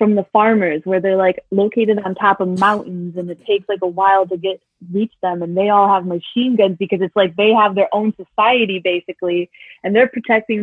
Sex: female